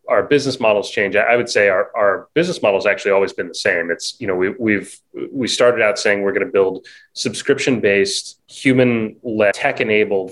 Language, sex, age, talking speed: English, male, 30-49, 190 wpm